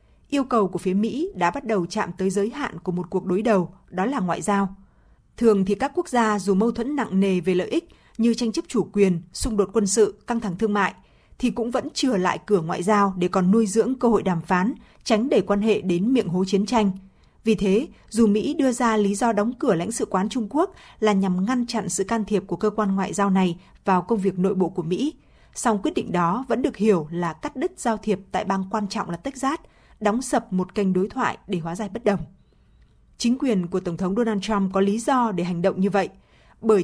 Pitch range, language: 190-235 Hz, Vietnamese